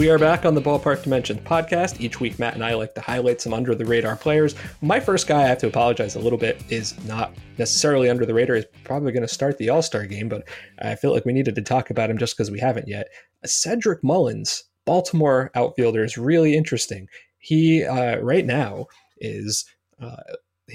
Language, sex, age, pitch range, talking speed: English, male, 30-49, 115-150 Hz, 215 wpm